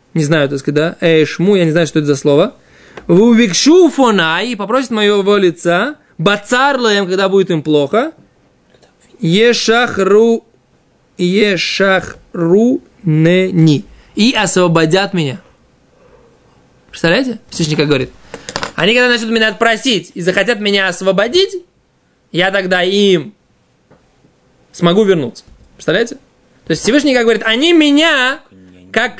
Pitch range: 180-255 Hz